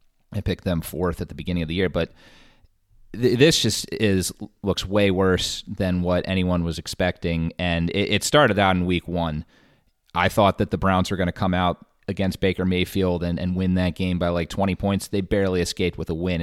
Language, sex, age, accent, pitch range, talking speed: English, male, 30-49, American, 85-105 Hz, 215 wpm